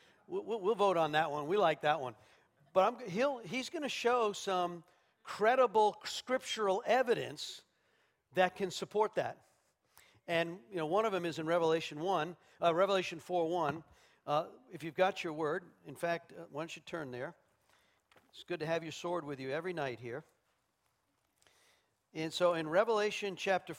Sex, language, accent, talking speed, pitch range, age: male, English, American, 170 wpm, 160-225 Hz, 50-69